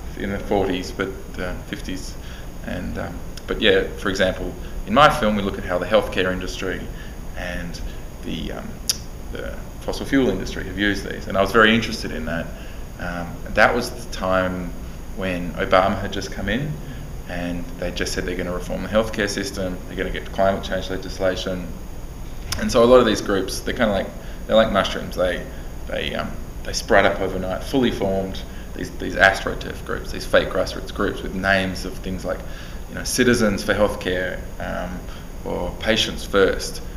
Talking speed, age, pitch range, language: 180 wpm, 20-39, 90-100 Hz, English